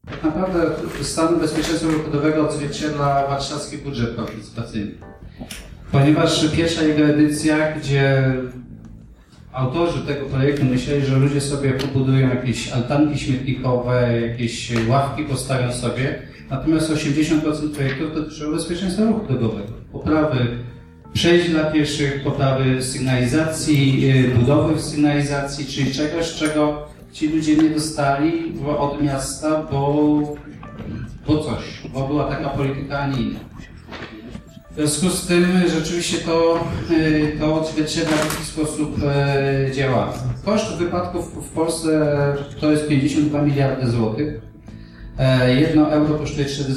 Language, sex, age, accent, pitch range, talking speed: Polish, male, 40-59, native, 130-155 Hz, 120 wpm